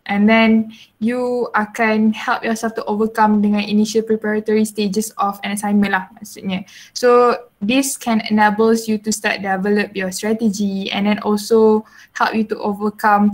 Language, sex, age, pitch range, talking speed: Malay, female, 10-29, 205-230 Hz, 155 wpm